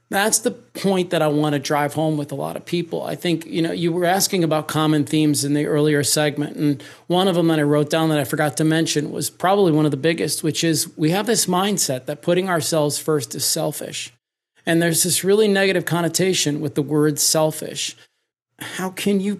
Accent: American